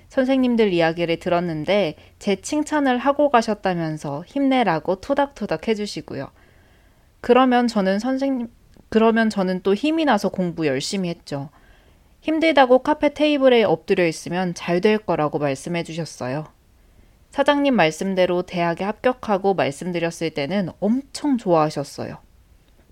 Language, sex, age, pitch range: Korean, female, 20-39, 160-235 Hz